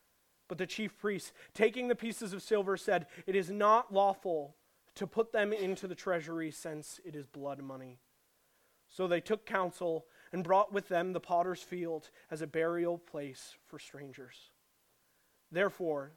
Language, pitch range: English, 155-200 Hz